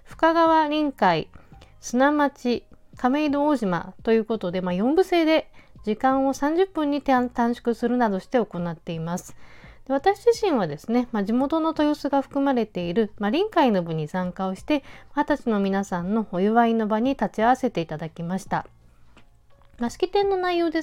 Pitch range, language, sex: 185-280 Hz, Japanese, female